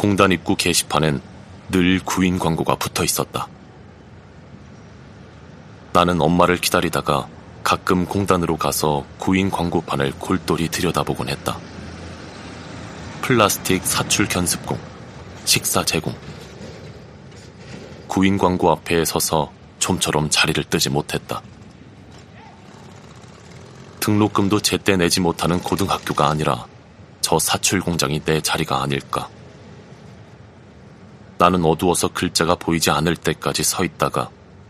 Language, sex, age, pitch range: Korean, male, 30-49, 80-95 Hz